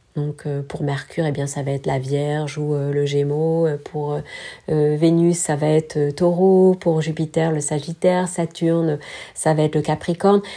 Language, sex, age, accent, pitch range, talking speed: French, female, 40-59, French, 150-180 Hz, 180 wpm